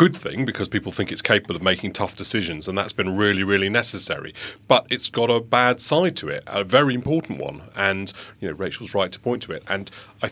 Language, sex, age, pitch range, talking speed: English, male, 40-59, 95-125 Hz, 225 wpm